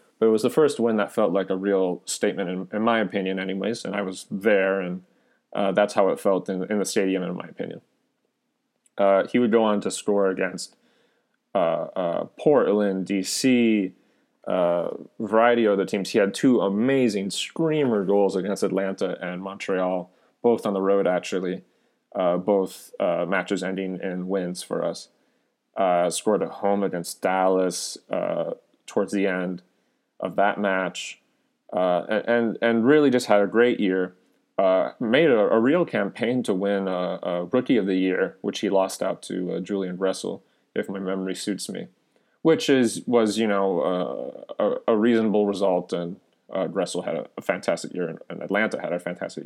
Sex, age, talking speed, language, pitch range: male, 30-49, 180 wpm, English, 95-110 Hz